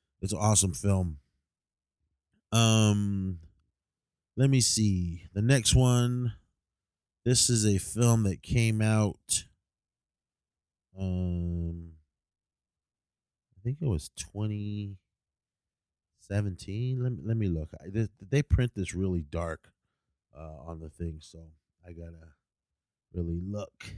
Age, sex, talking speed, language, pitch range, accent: 30-49, male, 115 wpm, English, 85-110 Hz, American